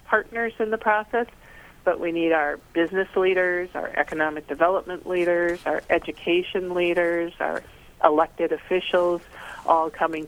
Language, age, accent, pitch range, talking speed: English, 40-59, American, 160-185 Hz, 130 wpm